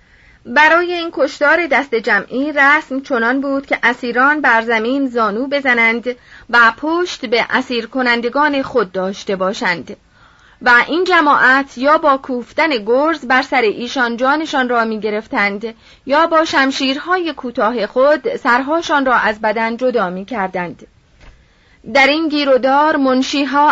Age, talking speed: 30-49, 125 wpm